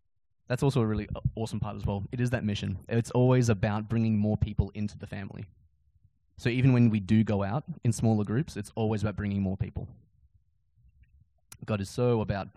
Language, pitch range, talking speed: English, 100-125 Hz, 195 wpm